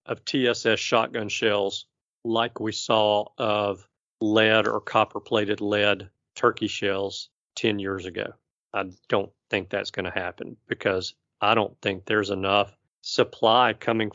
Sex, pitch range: male, 100-120 Hz